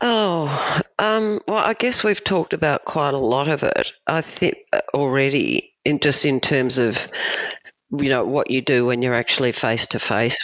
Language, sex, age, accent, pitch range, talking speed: English, female, 50-69, Australian, 110-155 Hz, 185 wpm